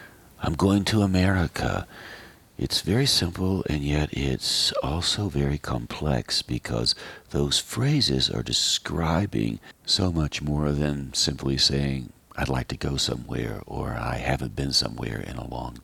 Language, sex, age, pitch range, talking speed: English, male, 60-79, 65-95 Hz, 140 wpm